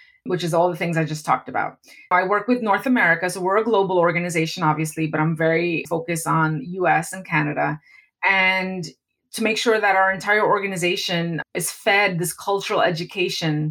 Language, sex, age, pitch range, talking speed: English, female, 20-39, 160-190 Hz, 180 wpm